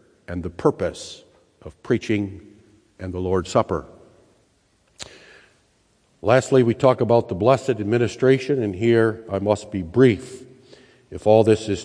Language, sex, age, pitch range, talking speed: English, male, 60-79, 110-140 Hz, 130 wpm